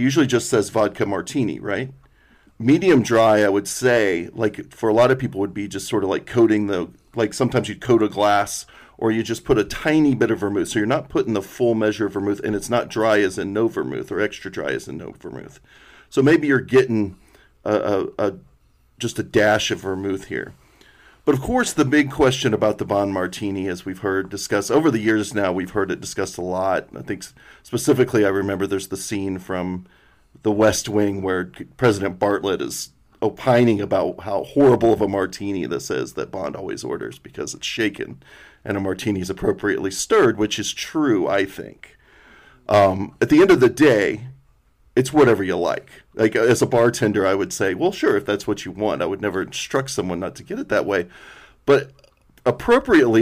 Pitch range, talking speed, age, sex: 100-125 Hz, 205 wpm, 40-59, male